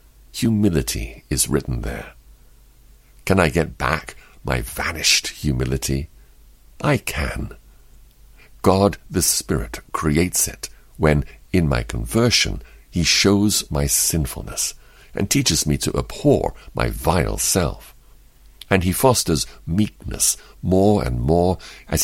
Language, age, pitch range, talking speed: English, 60-79, 70-100 Hz, 115 wpm